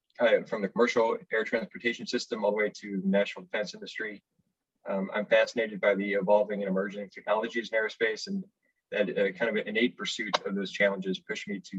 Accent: American